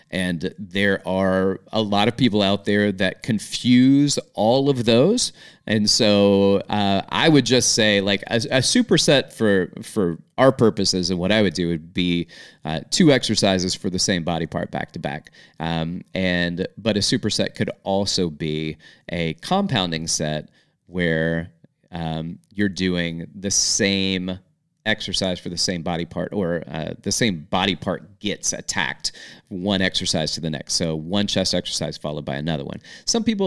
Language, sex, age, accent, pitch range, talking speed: English, male, 30-49, American, 90-115 Hz, 165 wpm